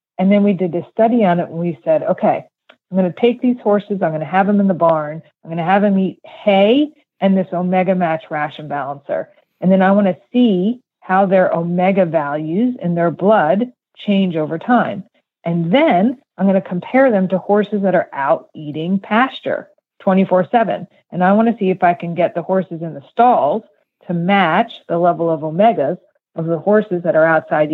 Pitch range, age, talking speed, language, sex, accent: 165-205 Hz, 40-59, 210 wpm, English, female, American